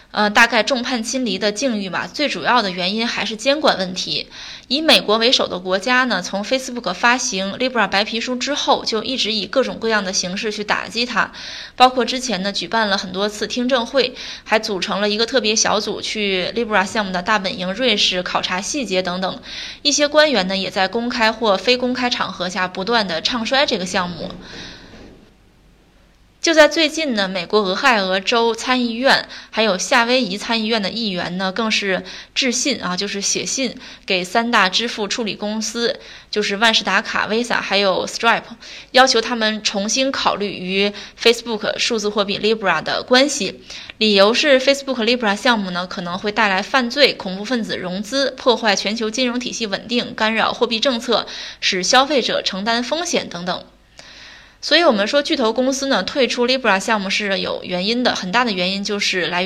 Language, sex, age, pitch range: Chinese, female, 20-39, 195-250 Hz